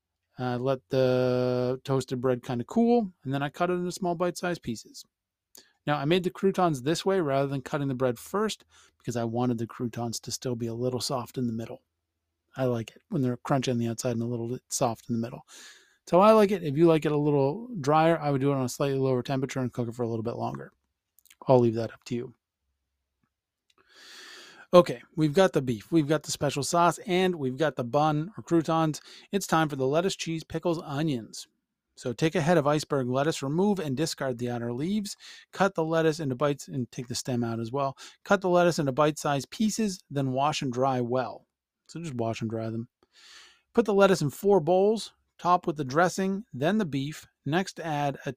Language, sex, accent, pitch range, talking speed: English, male, American, 125-175 Hz, 220 wpm